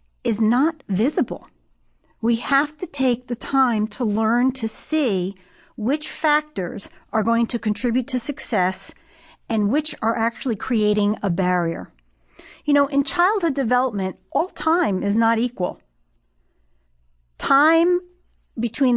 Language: English